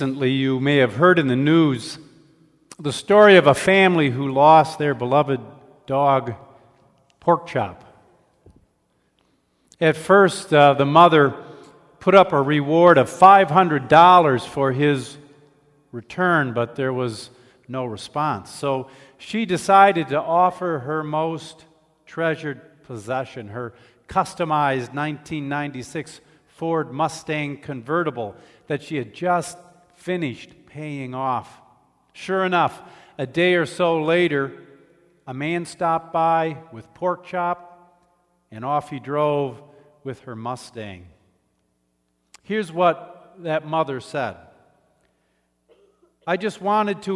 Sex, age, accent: male, 50-69, American